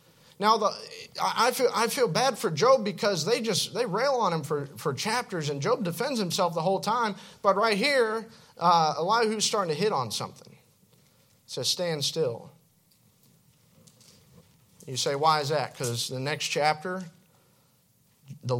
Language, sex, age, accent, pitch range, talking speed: English, male, 40-59, American, 140-190 Hz, 160 wpm